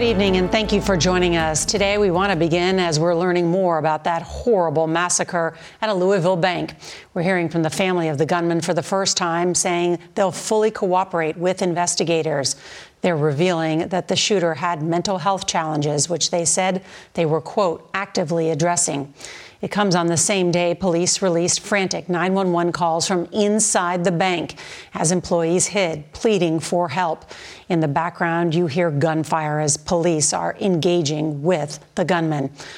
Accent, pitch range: American, 165-190 Hz